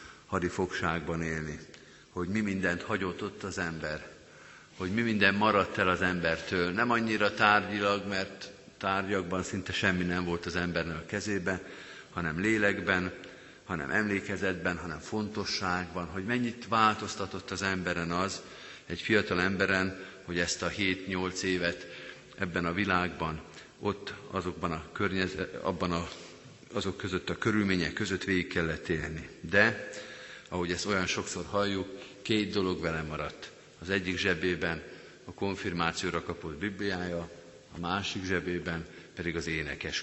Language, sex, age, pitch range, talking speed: Hungarian, male, 50-69, 85-100 Hz, 130 wpm